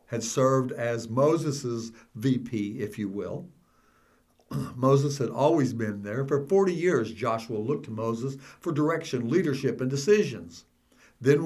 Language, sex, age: English, male, 60-79